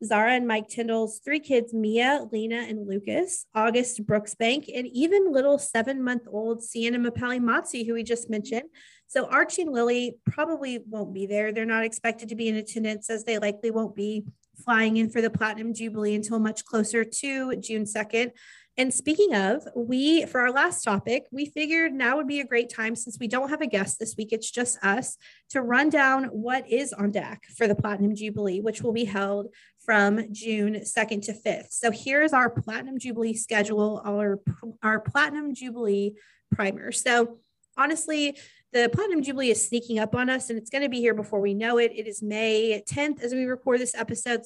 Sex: female